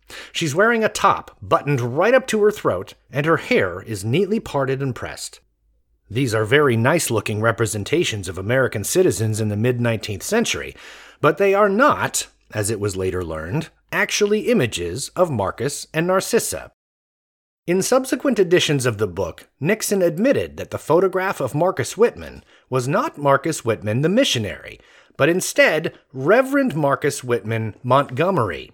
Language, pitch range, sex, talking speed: English, 115-190 Hz, male, 150 wpm